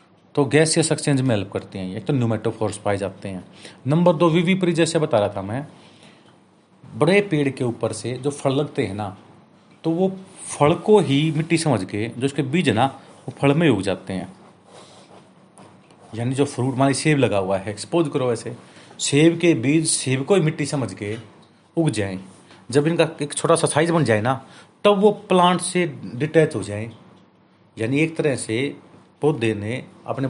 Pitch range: 115-165 Hz